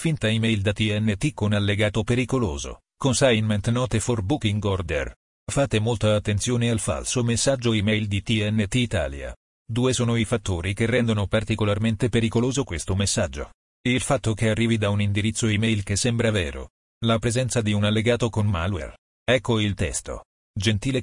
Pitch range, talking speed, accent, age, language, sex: 105-120 Hz, 155 wpm, native, 40-59, Italian, male